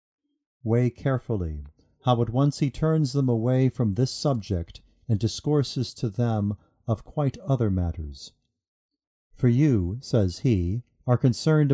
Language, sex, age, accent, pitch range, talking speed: English, male, 50-69, American, 105-135 Hz, 135 wpm